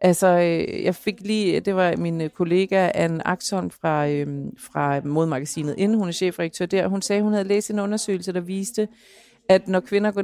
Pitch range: 180-220 Hz